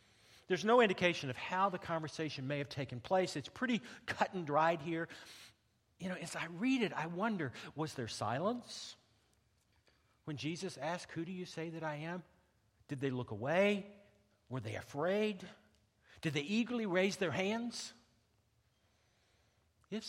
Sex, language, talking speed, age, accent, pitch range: male, English, 155 wpm, 50-69, American, 115-185 Hz